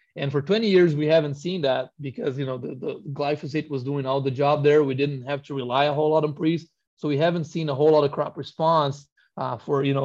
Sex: male